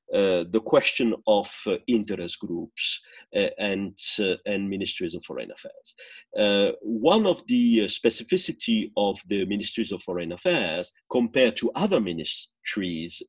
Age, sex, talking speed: 50-69, male, 140 wpm